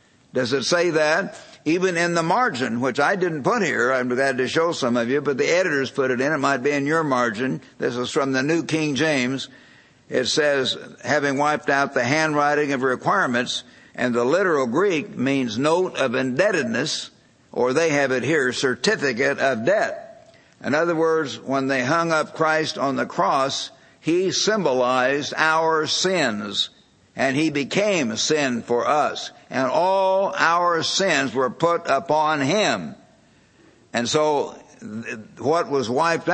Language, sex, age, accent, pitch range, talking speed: English, male, 60-79, American, 130-165 Hz, 165 wpm